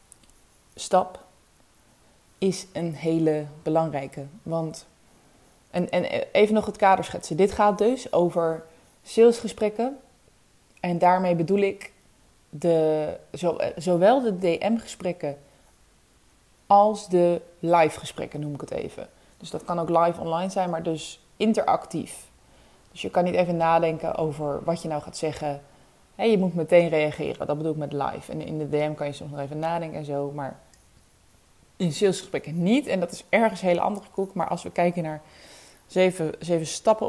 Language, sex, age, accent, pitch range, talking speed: Dutch, female, 20-39, Dutch, 155-195 Hz, 155 wpm